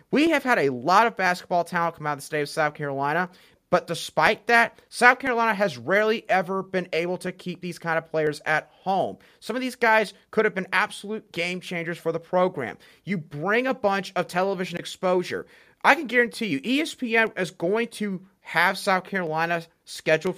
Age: 30-49